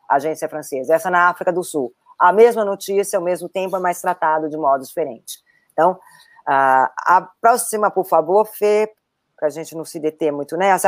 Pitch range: 160-230 Hz